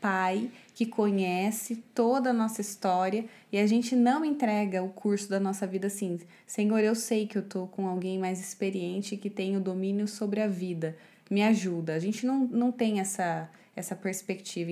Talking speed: 185 wpm